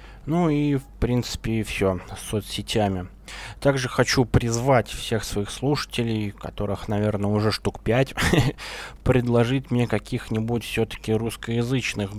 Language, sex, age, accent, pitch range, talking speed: Russian, male, 20-39, native, 105-130 Hz, 120 wpm